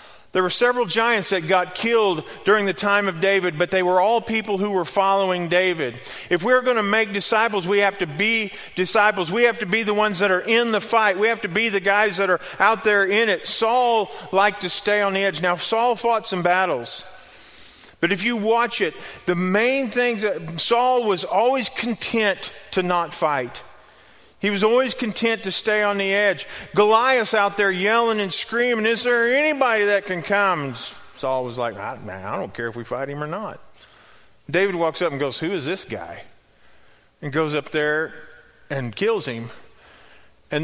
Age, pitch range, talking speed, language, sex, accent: 40-59, 175-225 Hz, 200 wpm, English, male, American